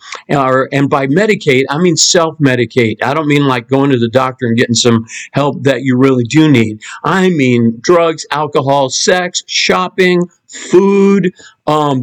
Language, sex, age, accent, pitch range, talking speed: English, male, 50-69, American, 130-180 Hz, 155 wpm